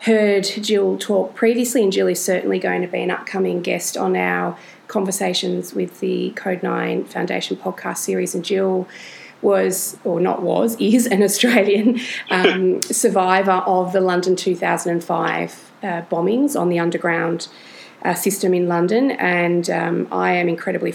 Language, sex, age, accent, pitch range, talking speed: English, female, 30-49, Australian, 170-195 Hz, 150 wpm